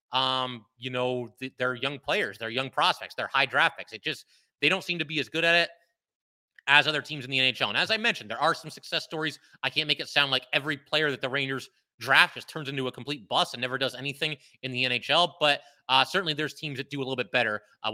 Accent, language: American, English